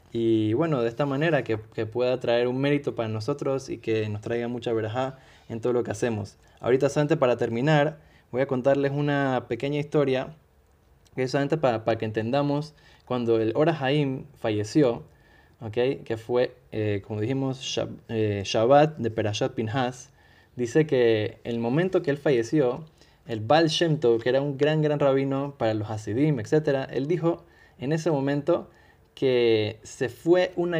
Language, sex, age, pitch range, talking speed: Spanish, male, 20-39, 115-150 Hz, 170 wpm